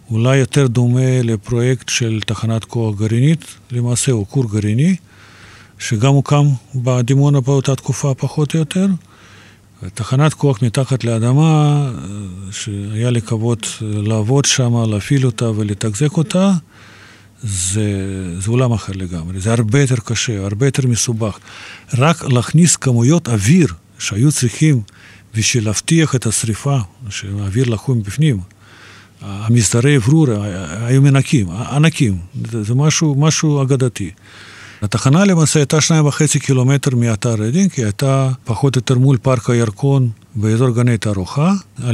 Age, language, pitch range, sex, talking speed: 40-59, Hebrew, 105-140 Hz, male, 115 wpm